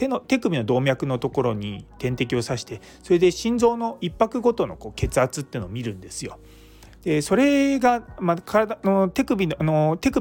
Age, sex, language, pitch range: 30-49, male, Japanese, 120-190 Hz